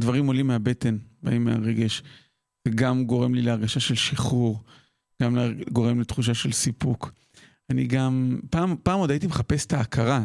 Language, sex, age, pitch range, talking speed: Hebrew, male, 40-59, 125-155 Hz, 145 wpm